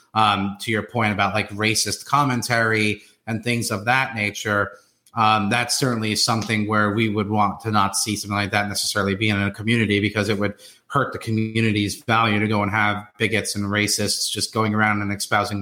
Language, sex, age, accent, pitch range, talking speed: English, male, 30-49, American, 105-125 Hz, 195 wpm